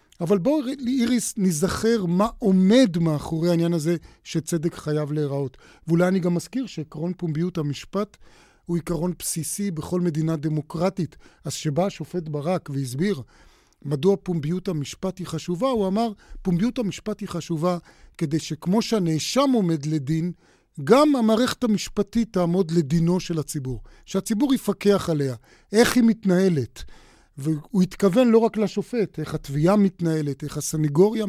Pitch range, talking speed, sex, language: 155-205 Hz, 130 wpm, male, Hebrew